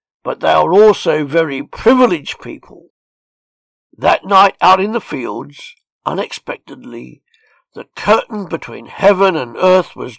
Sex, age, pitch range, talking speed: male, 60-79, 185-255 Hz, 125 wpm